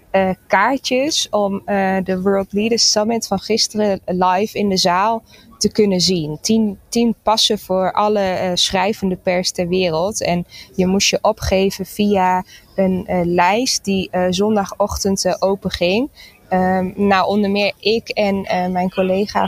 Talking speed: 155 wpm